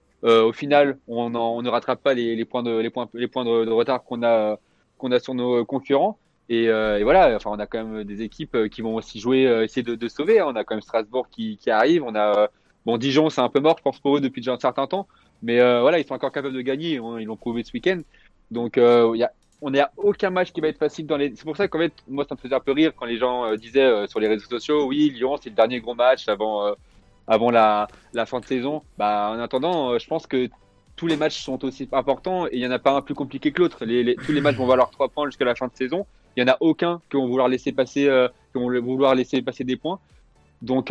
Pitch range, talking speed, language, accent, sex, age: 120-145 Hz, 280 wpm, French, French, male, 20-39